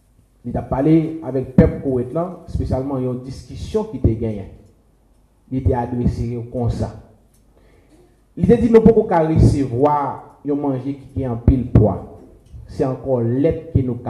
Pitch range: 120-185 Hz